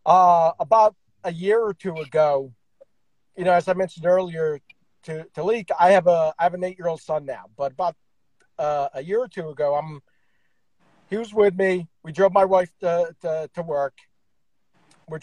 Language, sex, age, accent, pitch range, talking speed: English, male, 50-69, American, 160-215 Hz, 185 wpm